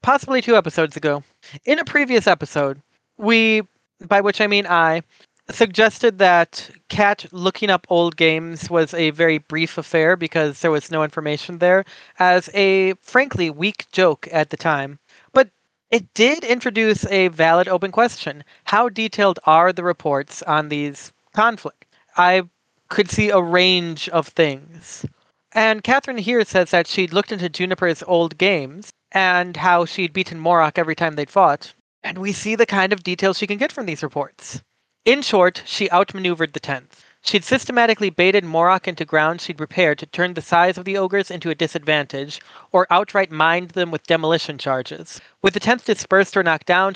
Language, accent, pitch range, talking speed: English, American, 160-200 Hz, 170 wpm